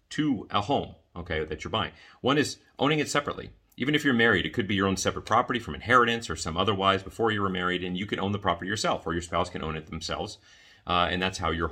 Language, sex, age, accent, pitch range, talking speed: English, male, 40-59, American, 85-100 Hz, 260 wpm